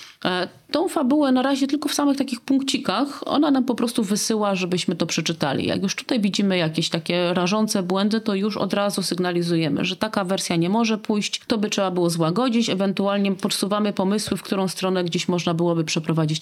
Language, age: Polish, 30-49